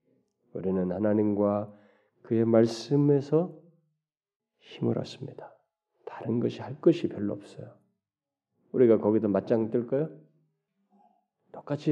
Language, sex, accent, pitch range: Korean, male, native, 110-160 Hz